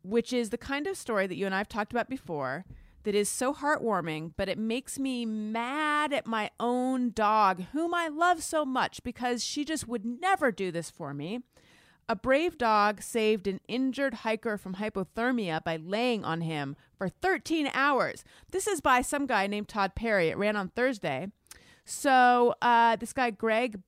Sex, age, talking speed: female, 30-49, 185 wpm